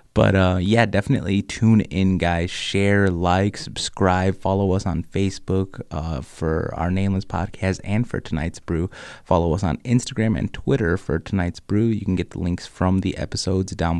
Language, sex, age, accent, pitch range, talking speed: English, male, 20-39, American, 90-110 Hz, 175 wpm